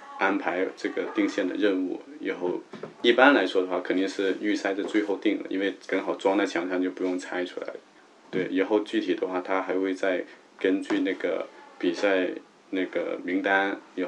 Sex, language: male, Chinese